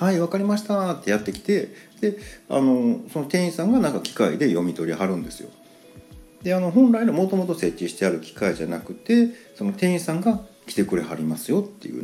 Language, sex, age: Japanese, male, 40-59